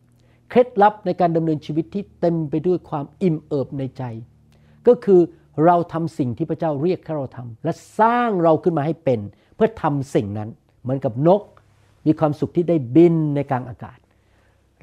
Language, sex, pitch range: Thai, male, 120-170 Hz